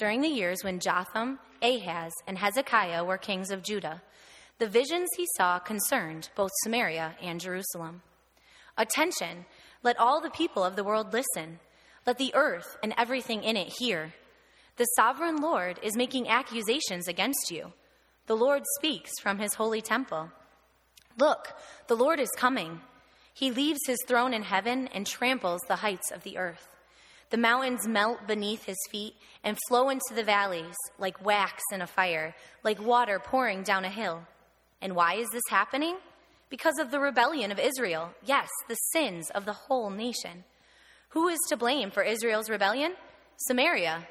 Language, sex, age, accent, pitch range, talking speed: English, female, 20-39, American, 185-255 Hz, 160 wpm